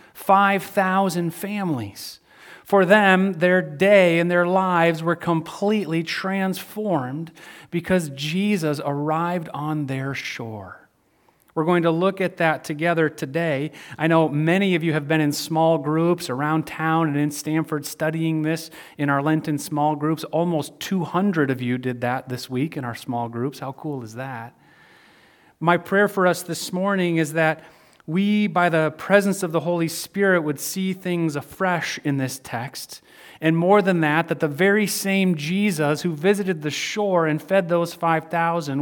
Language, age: English, 40-59